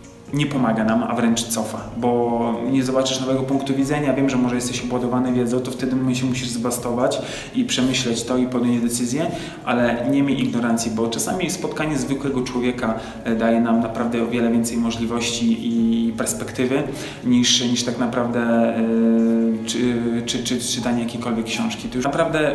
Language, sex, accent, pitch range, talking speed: Polish, male, native, 115-135 Hz, 170 wpm